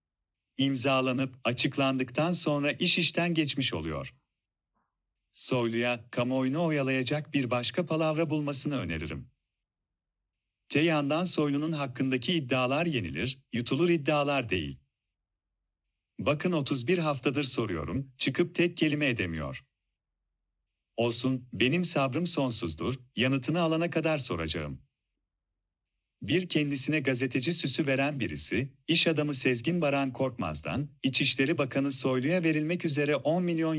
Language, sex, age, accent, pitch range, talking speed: Turkish, male, 40-59, native, 115-155 Hz, 100 wpm